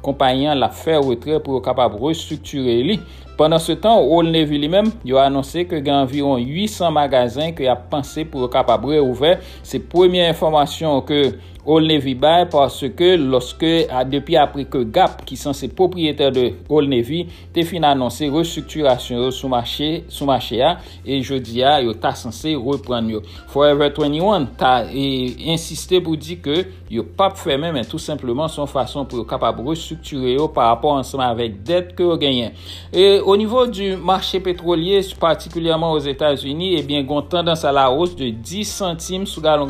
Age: 60-79